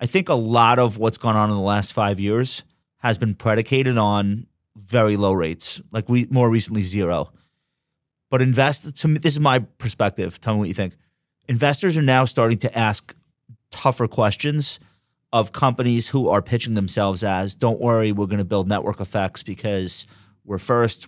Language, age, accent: English, 30-49, American